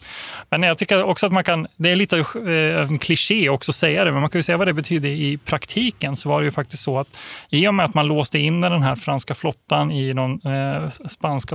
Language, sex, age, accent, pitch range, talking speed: Swedish, male, 30-49, native, 140-170 Hz, 245 wpm